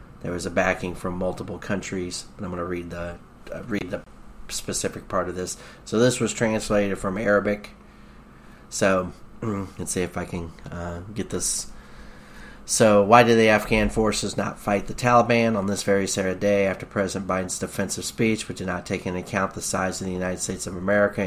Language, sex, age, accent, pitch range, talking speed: English, male, 30-49, American, 90-105 Hz, 190 wpm